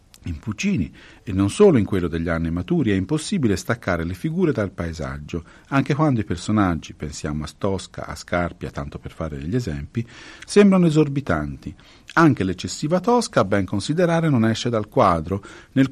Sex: male